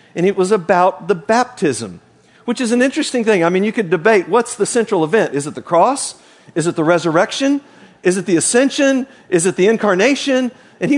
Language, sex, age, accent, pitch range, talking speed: English, male, 50-69, American, 175-230 Hz, 210 wpm